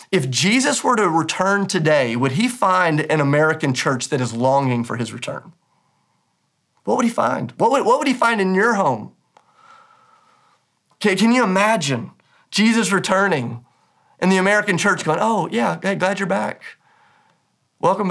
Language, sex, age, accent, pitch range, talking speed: English, male, 30-49, American, 125-180 Hz, 160 wpm